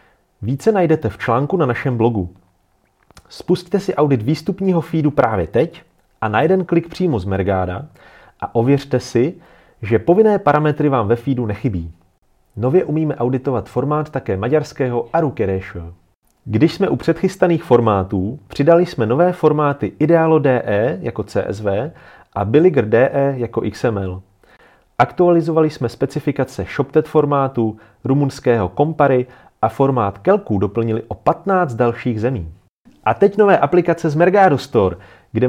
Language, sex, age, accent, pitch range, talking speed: Czech, male, 30-49, native, 115-160 Hz, 130 wpm